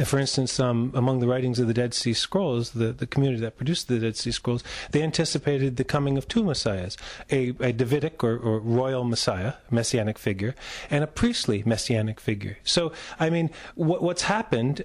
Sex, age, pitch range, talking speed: male, 40-59, 120-150 Hz, 190 wpm